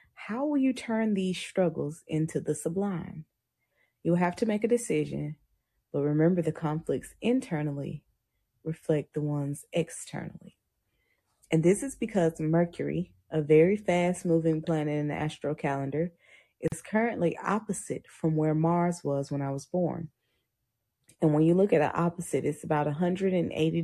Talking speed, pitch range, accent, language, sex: 150 wpm, 150-180 Hz, American, English, female